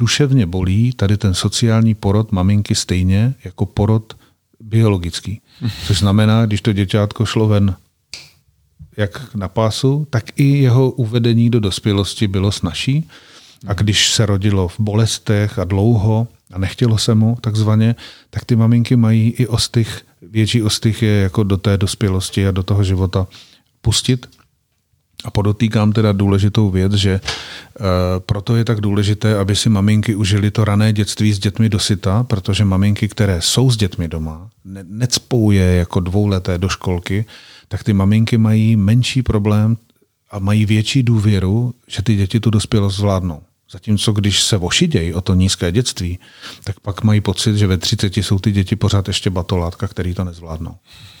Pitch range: 100-115 Hz